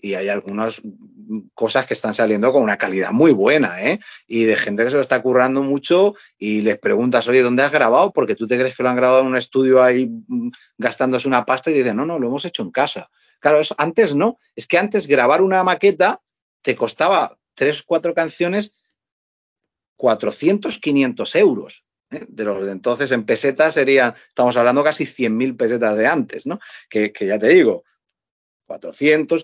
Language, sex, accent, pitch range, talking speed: Spanish, male, Spanish, 120-155 Hz, 190 wpm